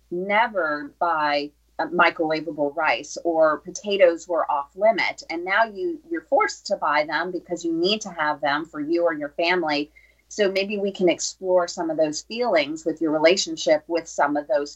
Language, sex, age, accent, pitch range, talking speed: English, female, 30-49, American, 160-200 Hz, 180 wpm